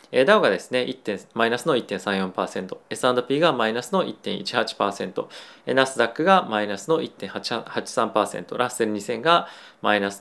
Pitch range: 100-135 Hz